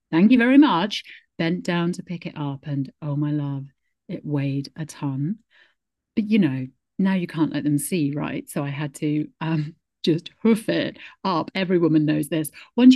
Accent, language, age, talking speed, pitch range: British, English, 40-59, 195 wpm, 155-225 Hz